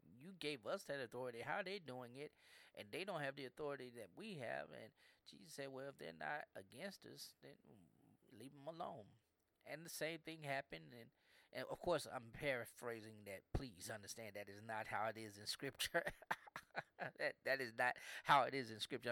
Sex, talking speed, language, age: male, 200 wpm, English, 30-49